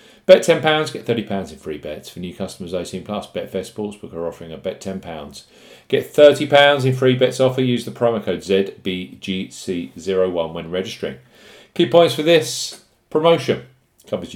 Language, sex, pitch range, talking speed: English, male, 95-140 Hz, 160 wpm